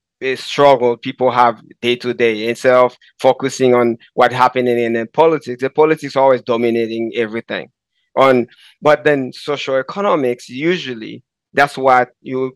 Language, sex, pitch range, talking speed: English, male, 120-140 Hz, 145 wpm